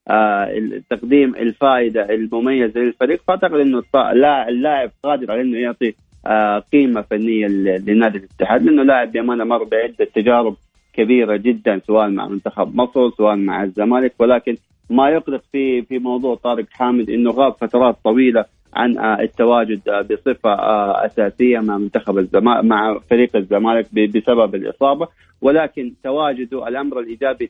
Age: 30-49